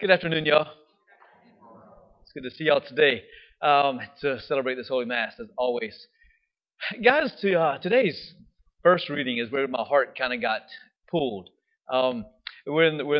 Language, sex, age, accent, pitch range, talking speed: English, male, 30-49, American, 130-190 Hz, 145 wpm